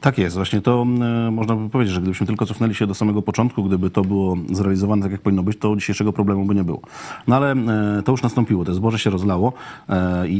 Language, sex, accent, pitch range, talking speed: Polish, male, native, 95-115 Hz, 225 wpm